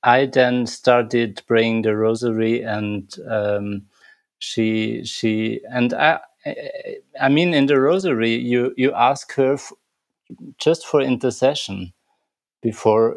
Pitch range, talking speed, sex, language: 110-130 Hz, 120 wpm, male, English